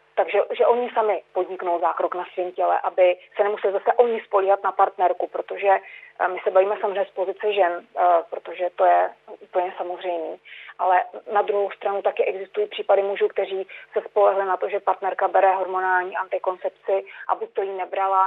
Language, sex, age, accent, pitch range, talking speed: Czech, female, 30-49, native, 185-215 Hz, 170 wpm